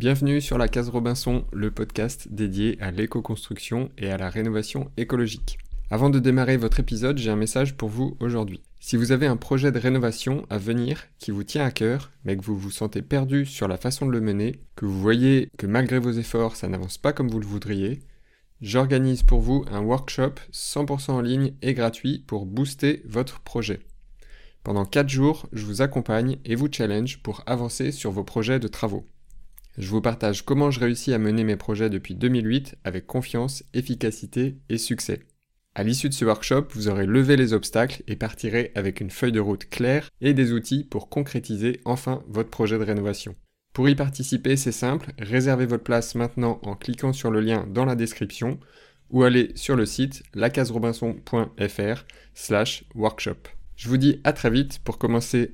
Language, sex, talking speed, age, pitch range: French, male, 185 wpm, 20-39, 110-130 Hz